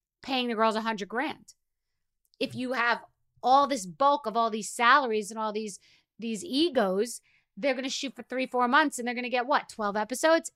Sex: female